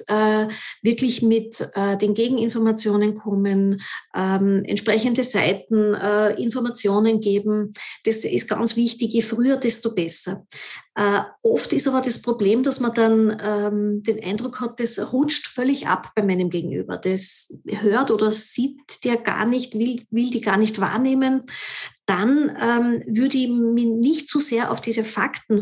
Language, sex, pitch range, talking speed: German, female, 210-250 Hz, 150 wpm